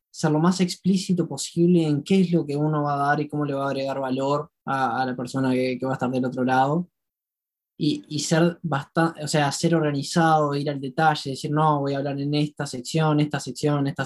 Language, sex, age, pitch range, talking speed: Spanish, male, 20-39, 135-160 Hz, 235 wpm